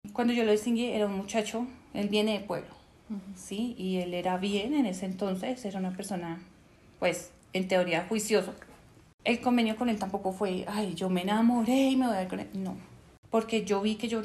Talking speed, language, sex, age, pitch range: 205 wpm, Spanish, female, 30-49, 185-220 Hz